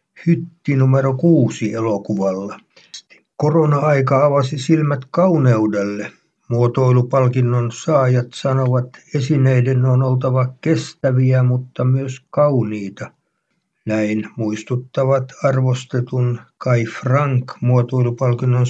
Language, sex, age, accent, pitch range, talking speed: Finnish, male, 60-79, native, 120-145 Hz, 75 wpm